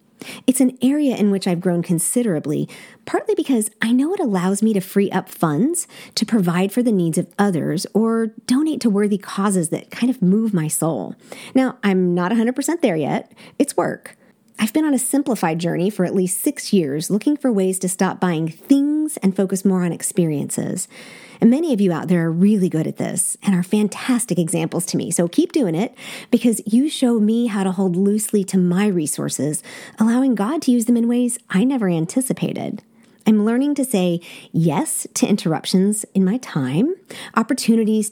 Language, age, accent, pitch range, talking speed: English, 40-59, American, 180-240 Hz, 190 wpm